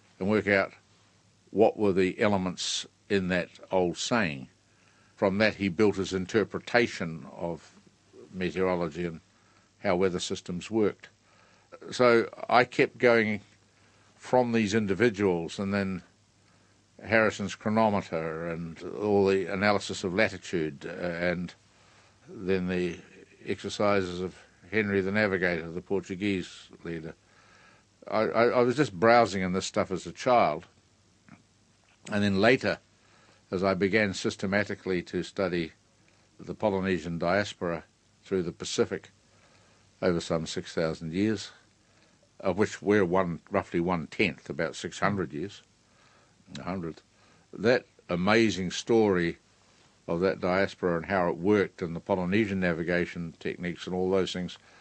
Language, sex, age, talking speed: English, male, 60-79, 120 wpm